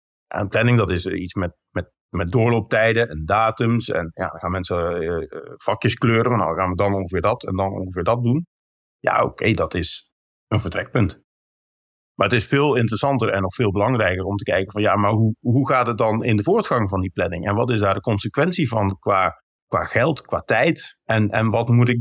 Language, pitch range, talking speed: Dutch, 100-130 Hz, 220 wpm